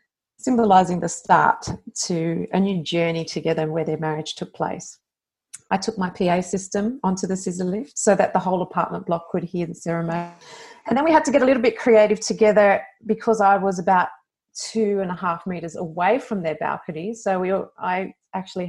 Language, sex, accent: English, female, Australian